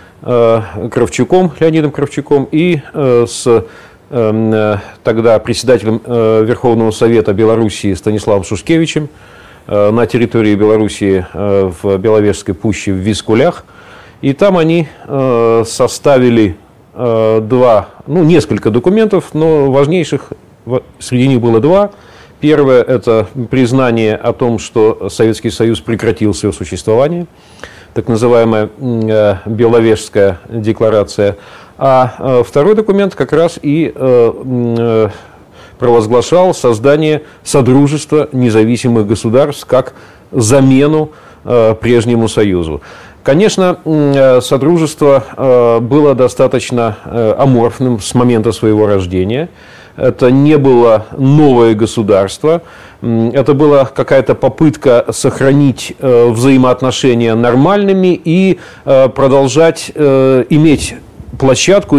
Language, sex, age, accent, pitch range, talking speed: Russian, male, 40-59, native, 110-140 Hz, 90 wpm